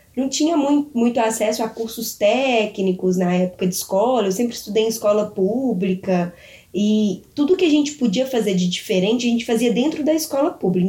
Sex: female